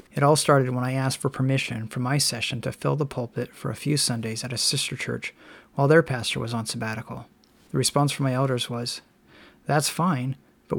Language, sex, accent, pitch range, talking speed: English, male, American, 125-145 Hz, 210 wpm